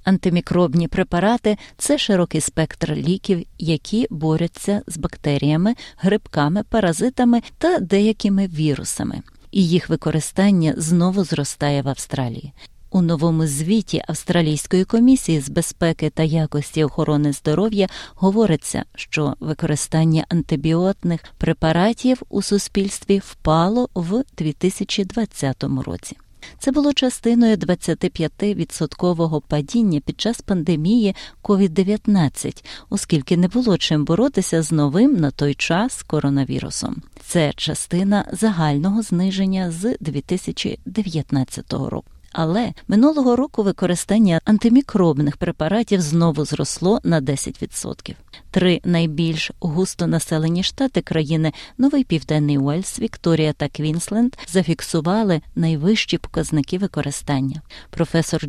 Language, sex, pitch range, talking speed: Ukrainian, female, 155-205 Hz, 105 wpm